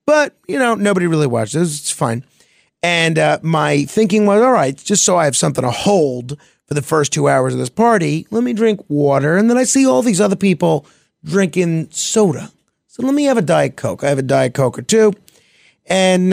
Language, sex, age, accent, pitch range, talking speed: English, male, 40-59, American, 130-180 Hz, 215 wpm